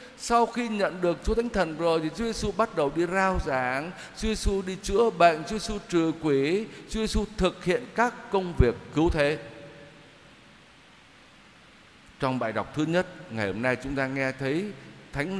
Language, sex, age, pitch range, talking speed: Vietnamese, male, 60-79, 135-195 Hz, 185 wpm